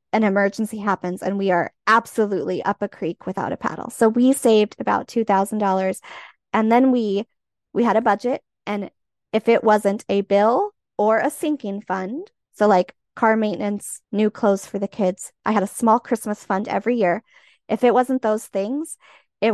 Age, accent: 20-39, American